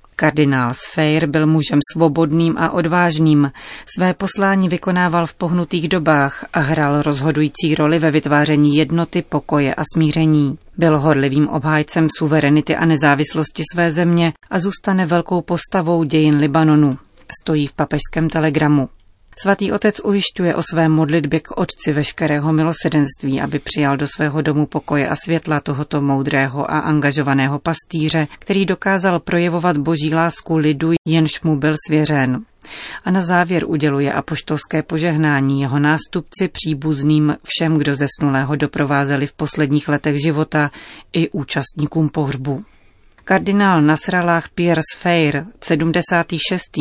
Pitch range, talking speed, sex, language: 145-170 Hz, 125 wpm, female, Czech